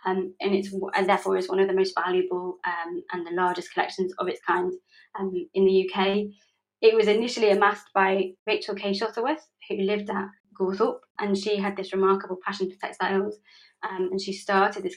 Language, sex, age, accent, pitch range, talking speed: English, female, 20-39, British, 185-215 Hz, 190 wpm